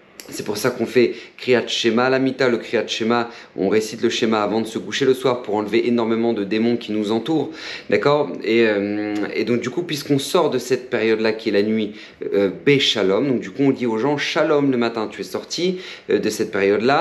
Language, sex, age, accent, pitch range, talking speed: French, male, 40-59, French, 110-145 Hz, 230 wpm